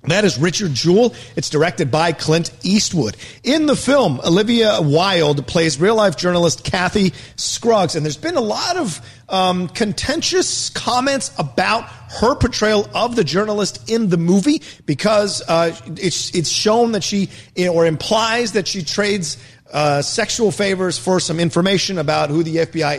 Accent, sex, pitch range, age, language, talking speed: American, male, 150-200 Hz, 40-59, English, 155 wpm